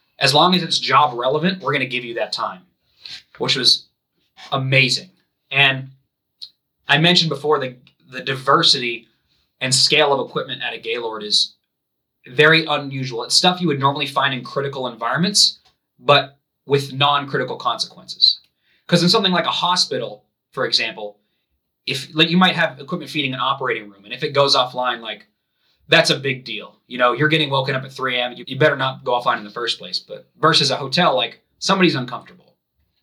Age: 20-39